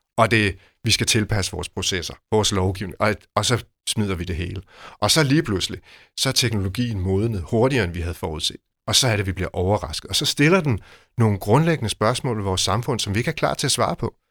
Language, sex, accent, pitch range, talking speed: Danish, male, native, 100-135 Hz, 235 wpm